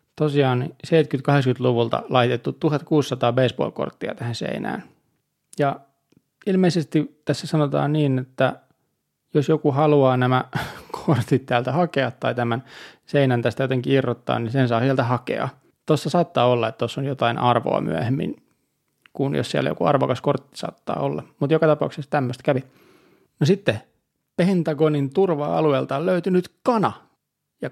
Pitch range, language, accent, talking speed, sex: 130-155 Hz, Finnish, native, 130 wpm, male